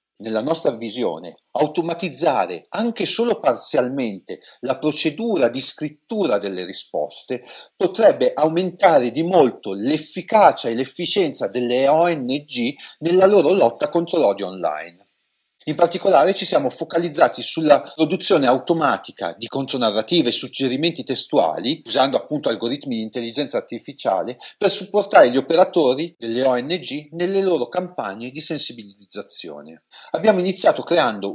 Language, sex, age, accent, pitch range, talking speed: Italian, male, 40-59, native, 115-170 Hz, 115 wpm